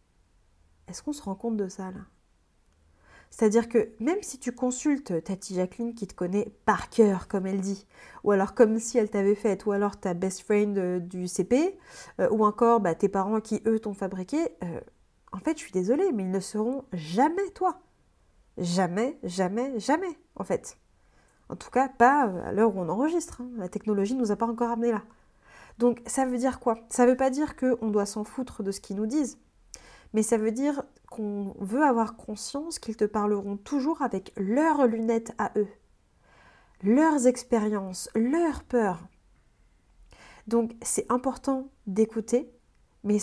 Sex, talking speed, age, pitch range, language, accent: female, 180 wpm, 30-49, 200-250 Hz, French, French